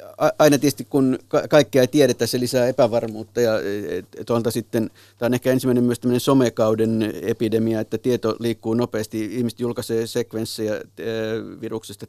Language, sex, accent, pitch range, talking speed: Finnish, male, native, 105-115 Hz, 130 wpm